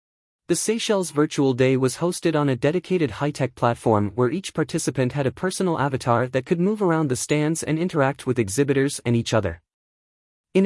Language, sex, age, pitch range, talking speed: English, male, 30-49, 125-160 Hz, 180 wpm